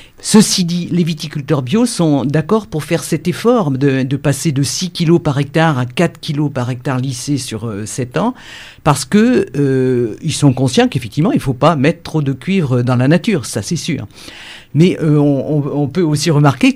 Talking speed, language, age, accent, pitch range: 195 wpm, French, 50-69, French, 135-175 Hz